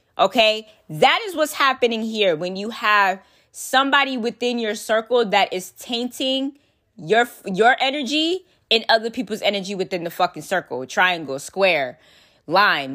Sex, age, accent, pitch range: female, 20-39, American, 205-290 Hz